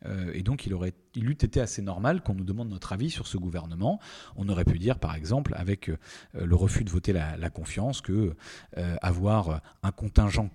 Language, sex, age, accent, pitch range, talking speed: French, male, 30-49, French, 95-120 Hz, 200 wpm